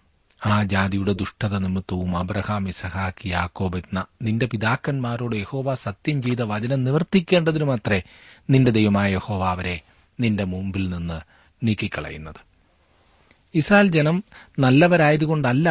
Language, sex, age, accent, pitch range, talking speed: Malayalam, male, 40-59, native, 90-145 Hz, 95 wpm